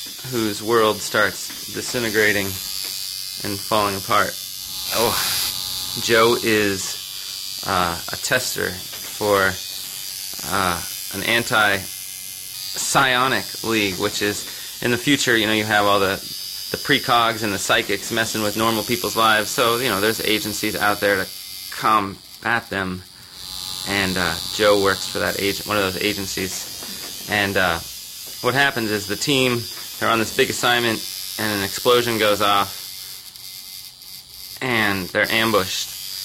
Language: English